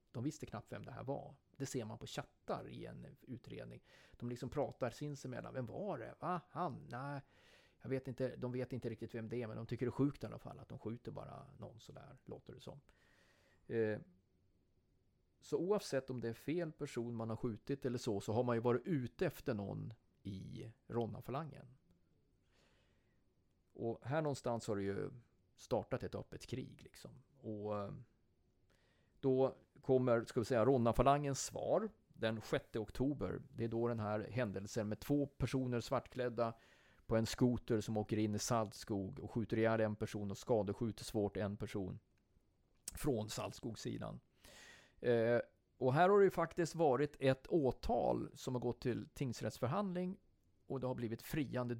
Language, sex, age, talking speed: Swedish, male, 30-49, 170 wpm